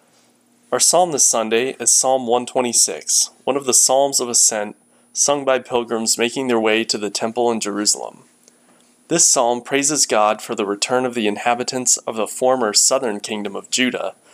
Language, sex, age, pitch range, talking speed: English, male, 30-49, 110-130 Hz, 170 wpm